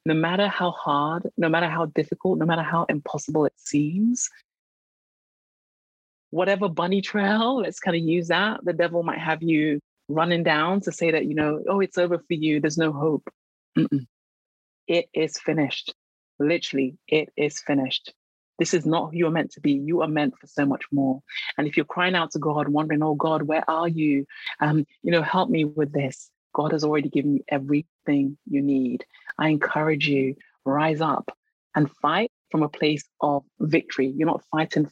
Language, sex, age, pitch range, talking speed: English, female, 30-49, 145-170 Hz, 190 wpm